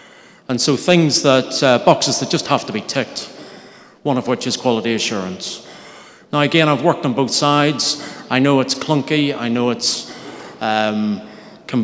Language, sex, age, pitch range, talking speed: English, male, 30-49, 110-140 Hz, 165 wpm